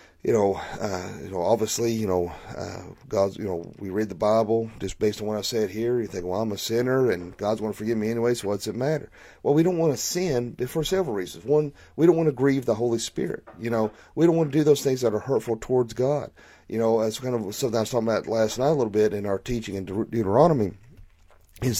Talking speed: 260 wpm